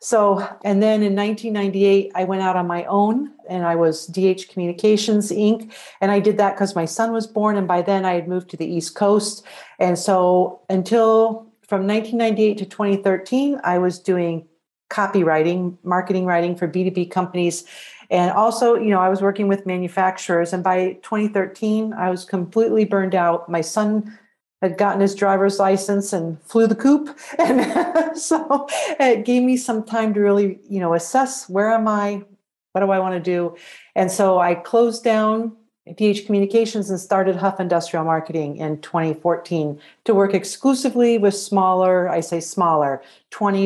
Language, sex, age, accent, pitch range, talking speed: English, female, 50-69, American, 180-215 Hz, 170 wpm